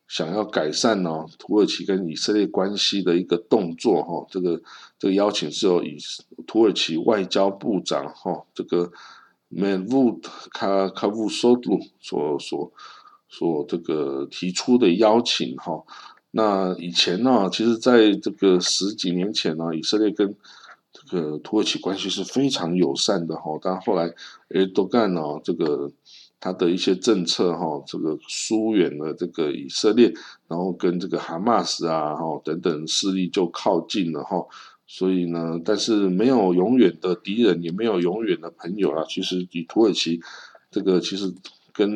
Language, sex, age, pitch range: Chinese, male, 50-69, 85-105 Hz